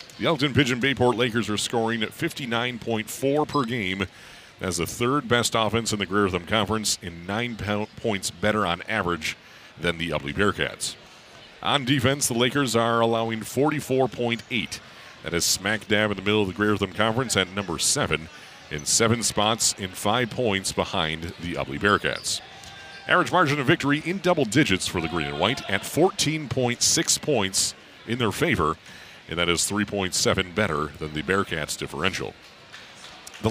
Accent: American